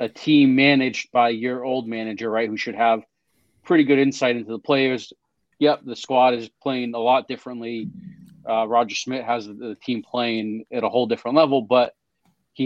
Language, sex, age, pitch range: English, male, 30-49, 110-130 Hz